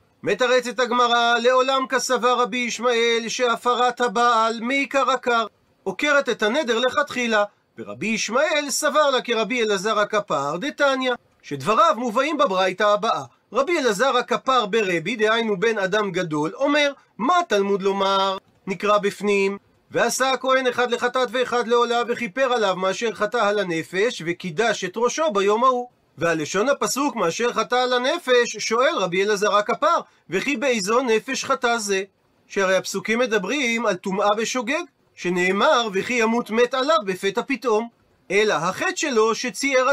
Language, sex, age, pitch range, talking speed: Hebrew, male, 40-59, 205-255 Hz, 135 wpm